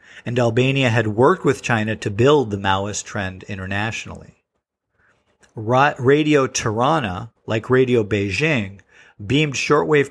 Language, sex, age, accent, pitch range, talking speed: English, male, 40-59, American, 105-135 Hz, 115 wpm